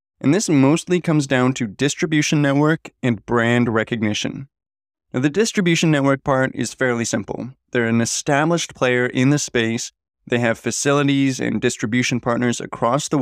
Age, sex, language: 20-39, male, English